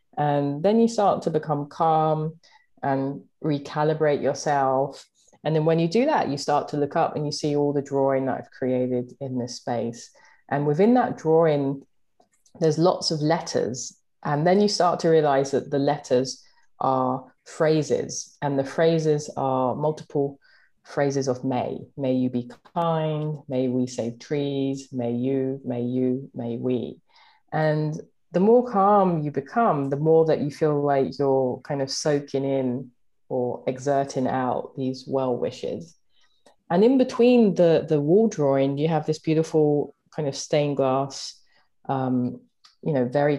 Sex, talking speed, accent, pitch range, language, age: female, 160 wpm, British, 130-155 Hz, English, 30-49